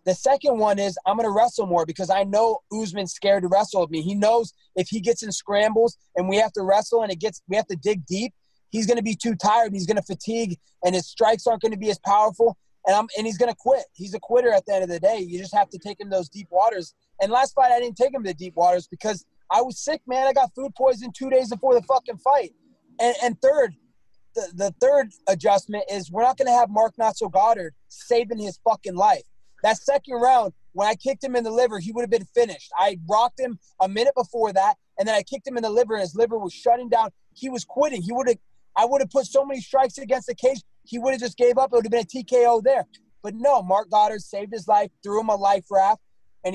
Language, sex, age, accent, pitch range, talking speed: English, male, 20-39, American, 195-245 Hz, 270 wpm